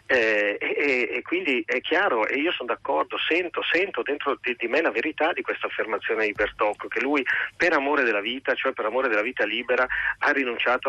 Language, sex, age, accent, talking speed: Italian, male, 30-49, native, 205 wpm